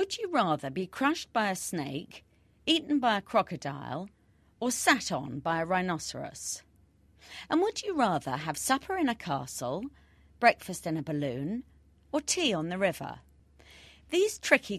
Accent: British